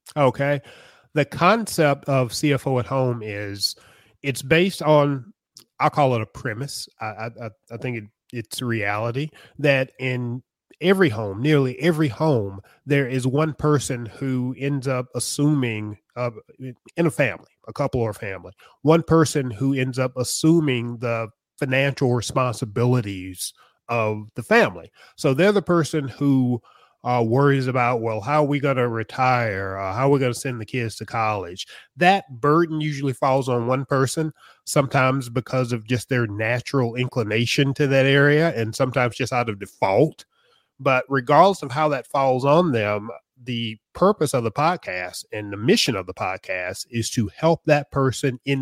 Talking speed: 165 wpm